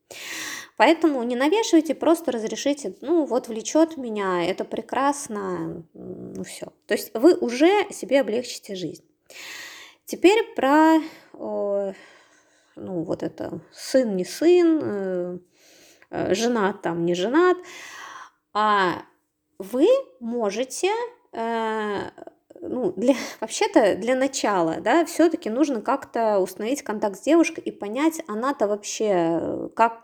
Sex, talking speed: female, 115 wpm